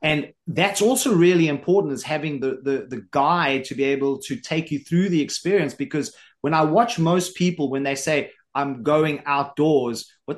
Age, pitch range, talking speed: 30-49, 135-160 Hz, 190 wpm